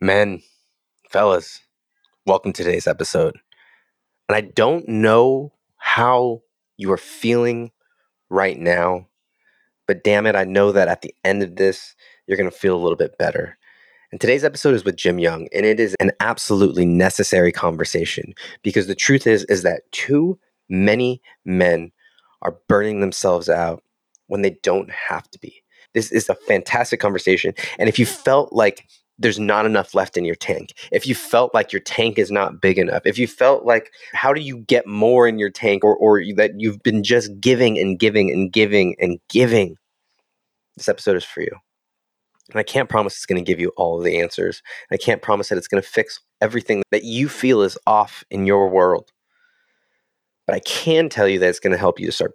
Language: English